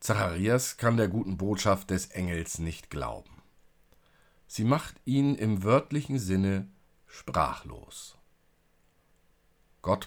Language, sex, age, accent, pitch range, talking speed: German, male, 50-69, German, 90-115 Hz, 100 wpm